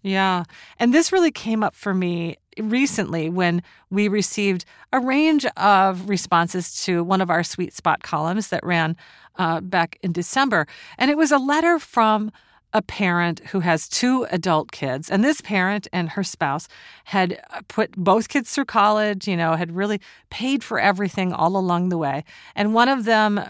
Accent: American